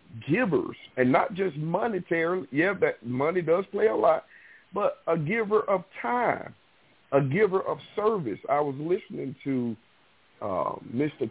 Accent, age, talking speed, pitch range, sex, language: American, 50-69, 145 wpm, 130-170 Hz, male, English